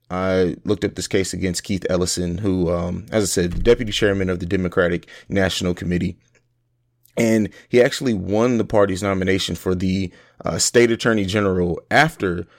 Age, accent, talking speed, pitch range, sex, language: 30-49, American, 165 wpm, 90-110 Hz, male, English